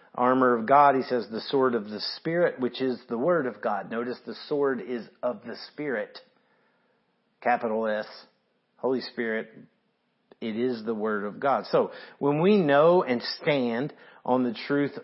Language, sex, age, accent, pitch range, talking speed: English, male, 40-59, American, 125-170 Hz, 170 wpm